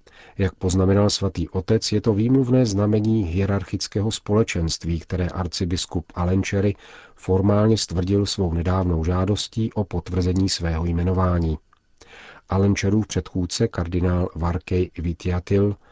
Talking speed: 105 wpm